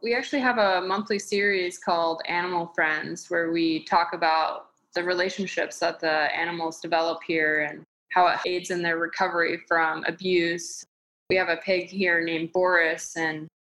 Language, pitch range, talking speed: English, 170-195 Hz, 160 wpm